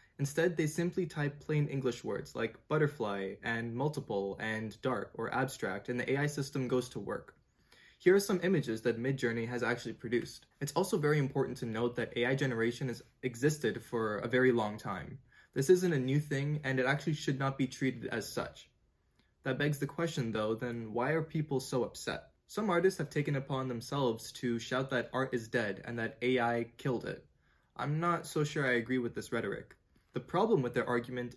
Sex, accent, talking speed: male, American, 195 wpm